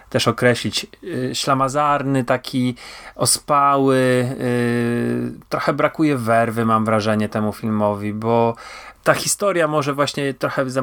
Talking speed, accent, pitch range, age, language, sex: 105 wpm, native, 115-135 Hz, 30-49, Polish, male